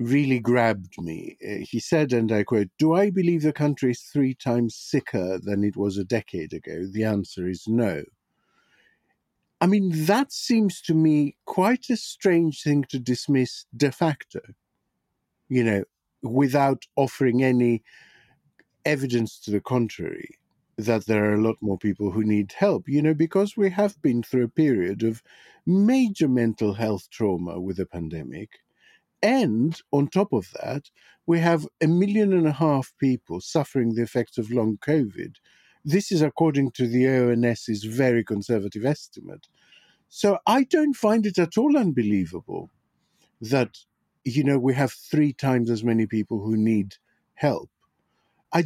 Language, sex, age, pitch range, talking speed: English, male, 50-69, 115-165 Hz, 155 wpm